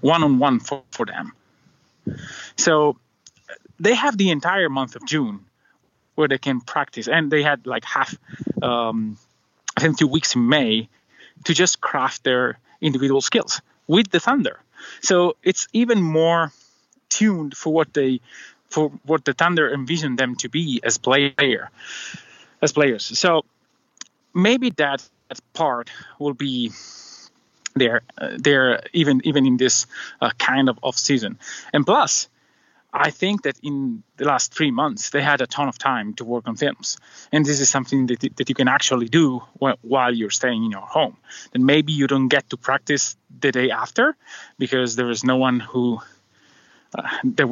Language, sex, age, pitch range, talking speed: English, male, 30-49, 125-160 Hz, 165 wpm